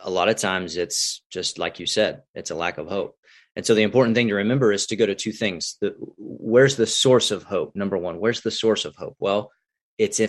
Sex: male